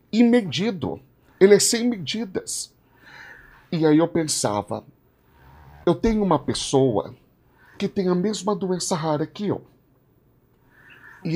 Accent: Brazilian